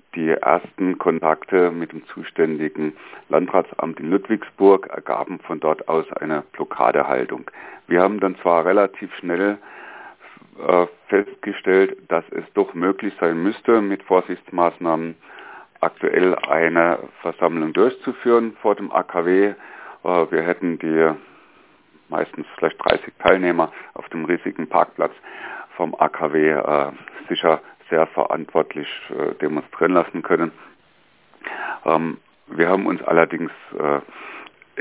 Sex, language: male, German